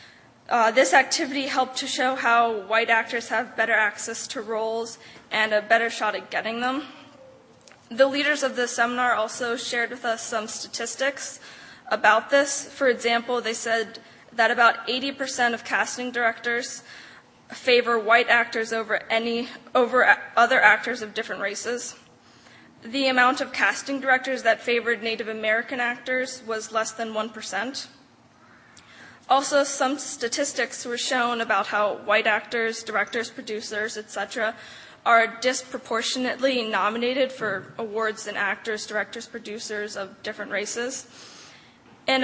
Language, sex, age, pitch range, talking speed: English, female, 20-39, 220-255 Hz, 135 wpm